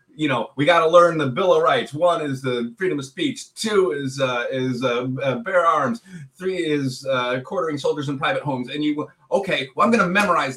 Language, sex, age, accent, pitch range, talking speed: English, male, 30-49, American, 125-185 Hz, 225 wpm